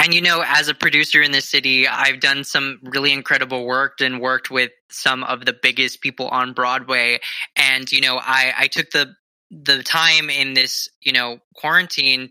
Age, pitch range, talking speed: 20-39, 130-150 Hz, 190 wpm